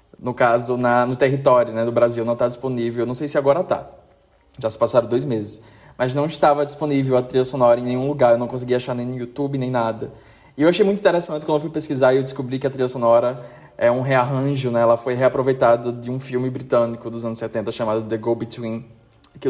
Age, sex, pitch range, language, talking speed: 20-39, male, 120-145 Hz, Portuguese, 230 wpm